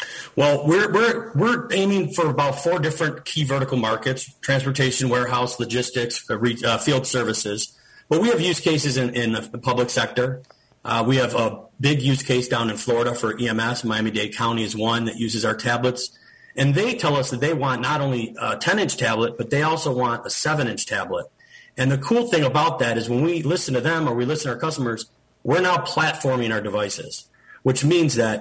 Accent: American